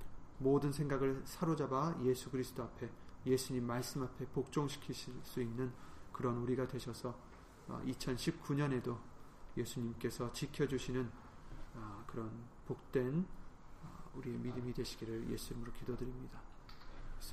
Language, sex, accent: Korean, male, native